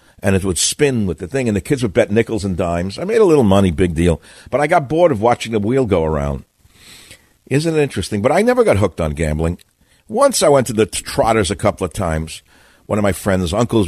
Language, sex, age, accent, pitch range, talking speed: English, male, 60-79, American, 85-120 Hz, 245 wpm